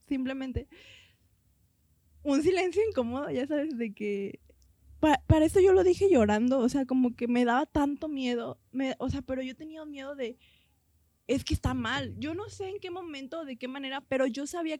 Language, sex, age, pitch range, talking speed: Spanish, female, 20-39, 230-290 Hz, 190 wpm